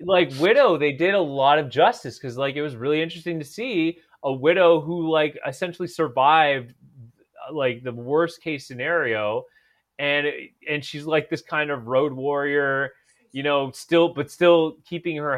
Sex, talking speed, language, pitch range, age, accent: male, 170 wpm, English, 140-170 Hz, 20-39, American